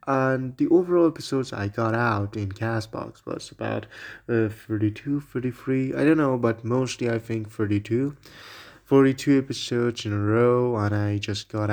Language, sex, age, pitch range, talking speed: English, male, 20-39, 105-125 Hz, 160 wpm